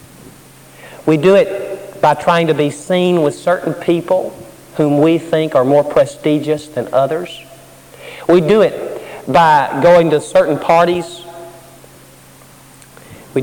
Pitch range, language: 140-185 Hz, English